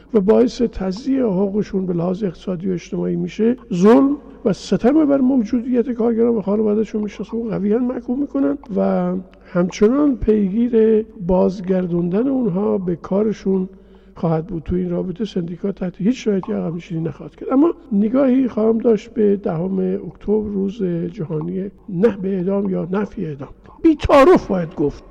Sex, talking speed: male, 150 wpm